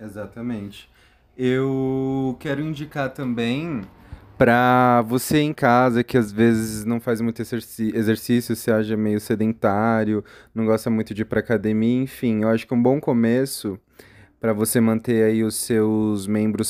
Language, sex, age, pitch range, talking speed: Portuguese, male, 20-39, 105-120 Hz, 145 wpm